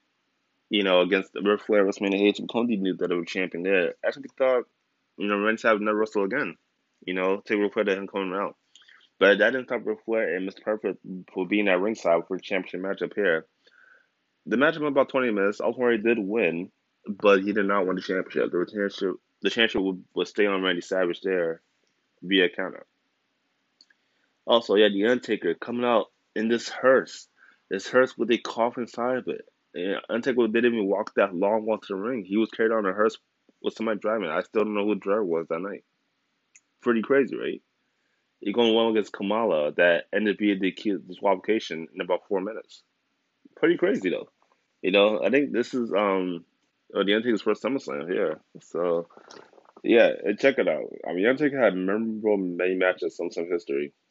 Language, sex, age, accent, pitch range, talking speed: English, male, 20-39, American, 95-115 Hz, 195 wpm